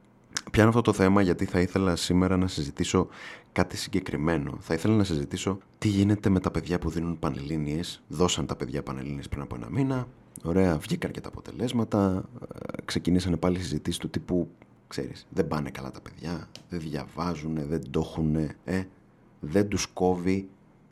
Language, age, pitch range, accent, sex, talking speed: Greek, 30-49, 80-95 Hz, native, male, 160 wpm